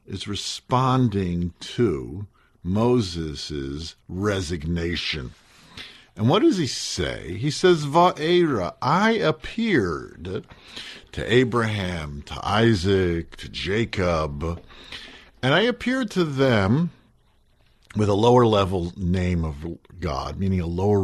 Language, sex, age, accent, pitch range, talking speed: English, male, 50-69, American, 85-135 Hz, 100 wpm